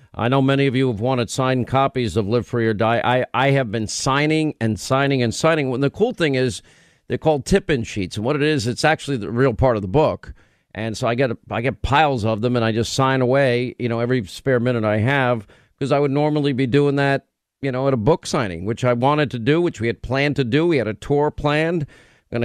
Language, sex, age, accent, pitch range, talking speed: English, male, 50-69, American, 115-140 Hz, 255 wpm